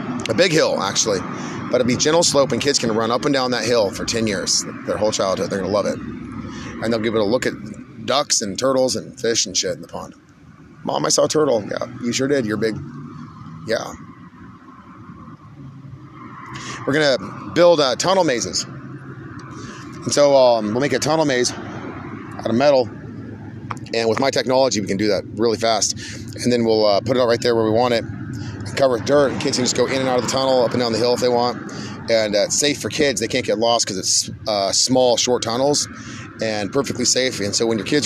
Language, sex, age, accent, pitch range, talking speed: English, male, 30-49, American, 110-130 Hz, 230 wpm